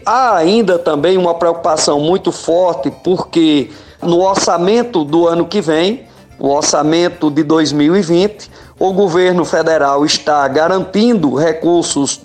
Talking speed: 120 wpm